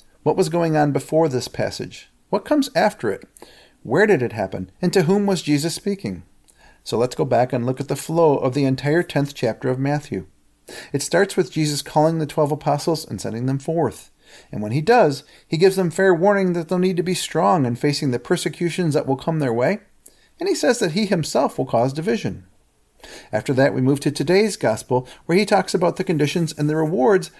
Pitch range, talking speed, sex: 135-185 Hz, 215 wpm, male